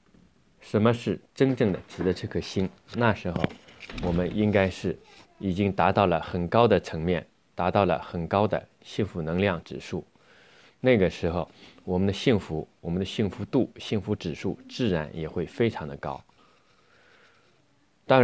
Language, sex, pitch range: Chinese, male, 90-115 Hz